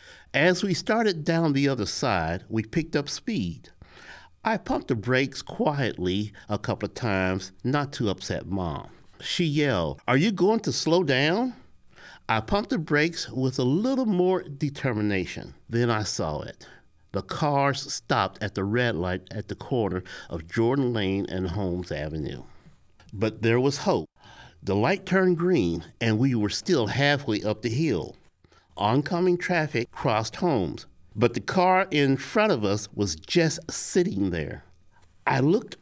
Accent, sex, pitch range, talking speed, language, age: American, male, 105-155 Hz, 155 wpm, English, 50-69